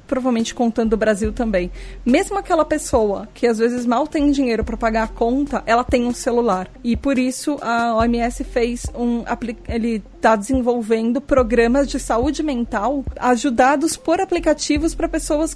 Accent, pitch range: Brazilian, 225-270 Hz